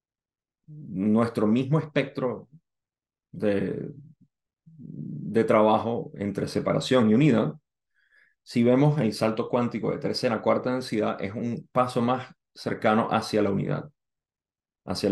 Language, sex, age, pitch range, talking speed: Spanish, male, 30-49, 105-130 Hz, 115 wpm